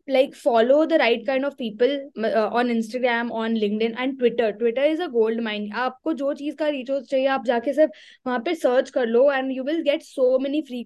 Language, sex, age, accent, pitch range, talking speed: English, female, 20-39, Indian, 225-280 Hz, 145 wpm